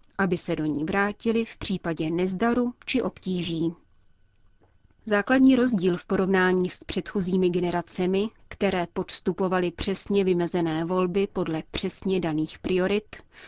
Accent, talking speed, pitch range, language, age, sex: native, 115 wpm, 175-210 Hz, Czech, 30-49, female